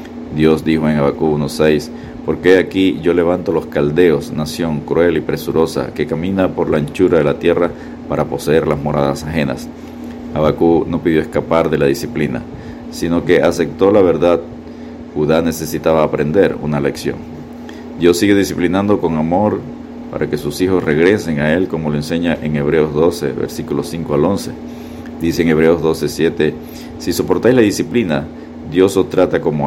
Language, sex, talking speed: Spanish, male, 160 wpm